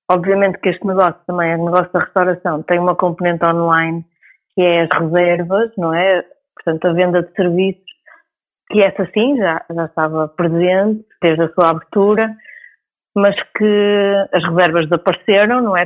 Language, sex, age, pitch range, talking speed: Portuguese, female, 30-49, 180-205 Hz, 165 wpm